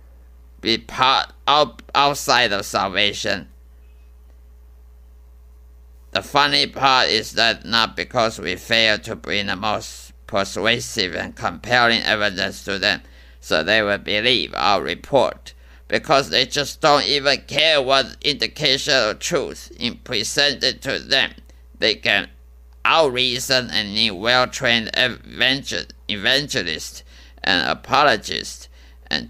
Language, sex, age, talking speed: English, male, 50-69, 110 wpm